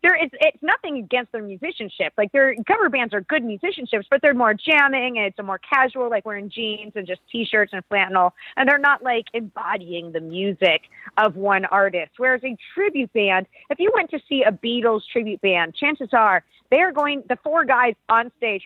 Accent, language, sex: American, English, female